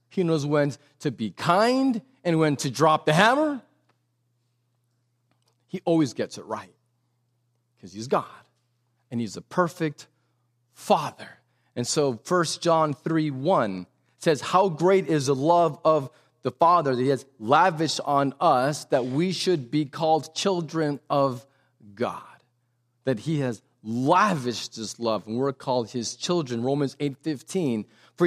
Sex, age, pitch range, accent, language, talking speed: male, 40-59, 125-185 Hz, American, English, 145 wpm